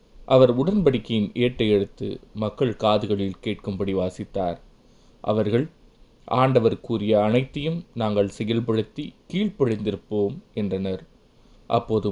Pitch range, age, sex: 100-120 Hz, 30-49, male